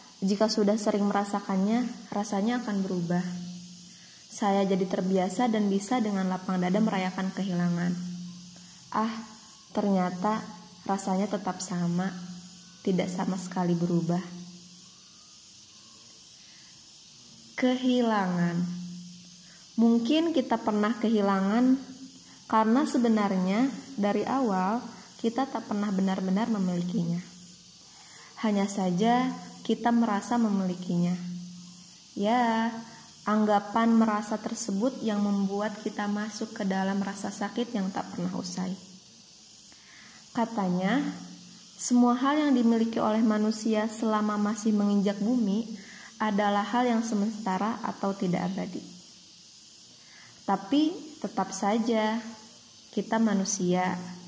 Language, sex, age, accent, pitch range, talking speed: Indonesian, female, 20-39, native, 185-225 Hz, 95 wpm